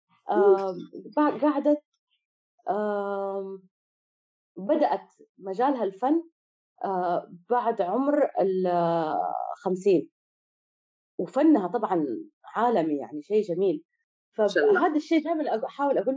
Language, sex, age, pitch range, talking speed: Arabic, female, 30-49, 195-280 Hz, 85 wpm